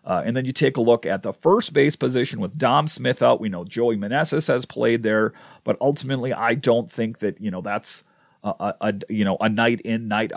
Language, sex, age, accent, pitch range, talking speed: English, male, 40-59, American, 110-140 Hz, 235 wpm